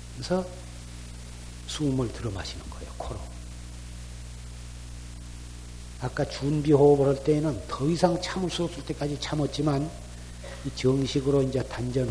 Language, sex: Korean, male